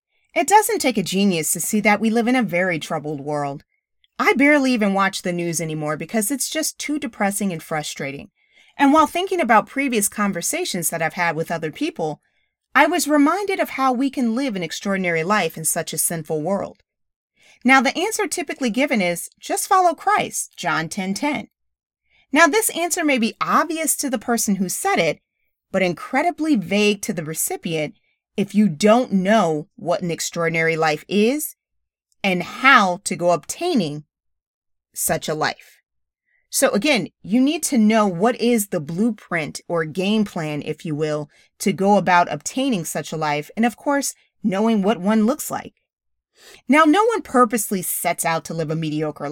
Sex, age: female, 30-49